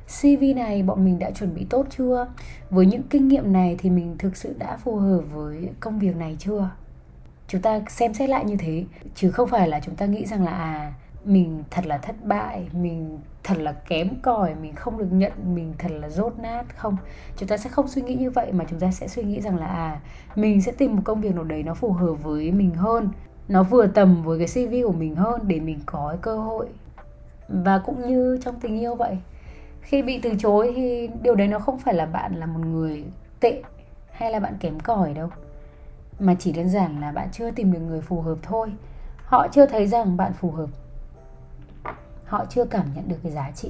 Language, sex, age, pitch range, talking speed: Vietnamese, female, 20-39, 165-230 Hz, 225 wpm